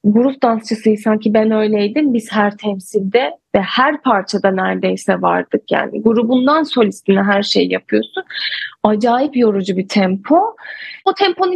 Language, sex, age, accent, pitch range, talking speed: Turkish, female, 30-49, native, 210-270 Hz, 130 wpm